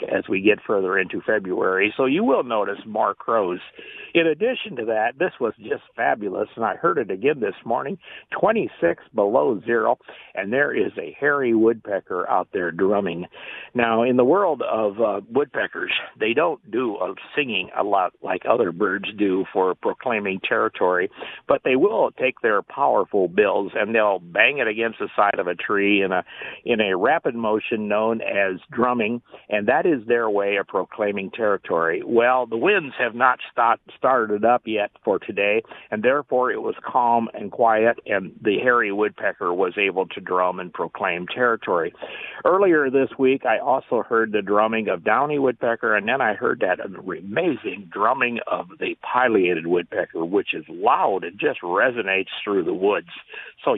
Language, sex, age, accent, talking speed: English, male, 50-69, American, 175 wpm